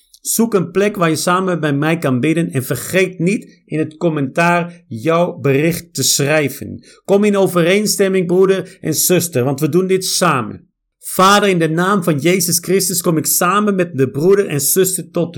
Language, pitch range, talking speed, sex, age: Dutch, 155-200 Hz, 185 wpm, male, 50-69